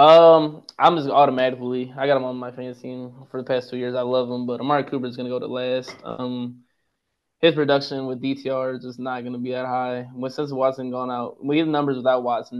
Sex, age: male, 20-39